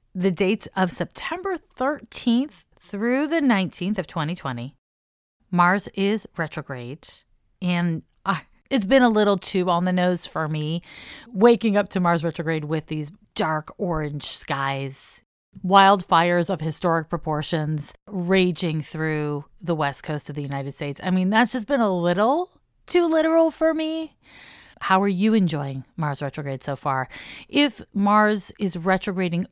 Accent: American